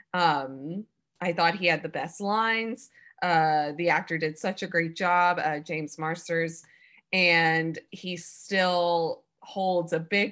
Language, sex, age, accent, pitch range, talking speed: English, female, 20-39, American, 165-215 Hz, 145 wpm